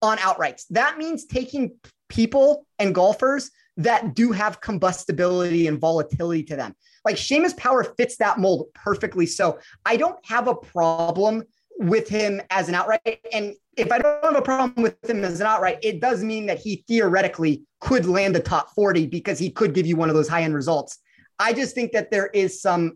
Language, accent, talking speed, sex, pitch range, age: English, American, 195 wpm, male, 165-225 Hz, 30-49